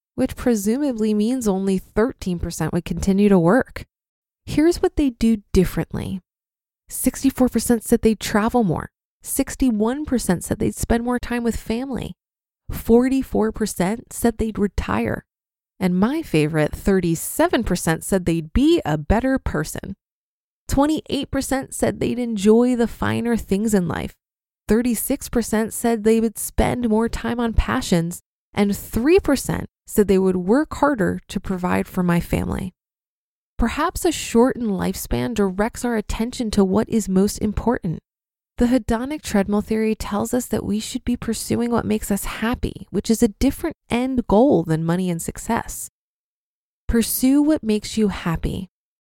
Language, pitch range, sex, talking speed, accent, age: English, 195-245 Hz, female, 140 wpm, American, 20-39